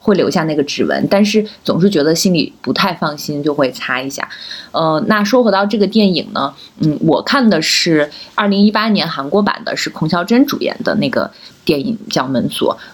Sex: female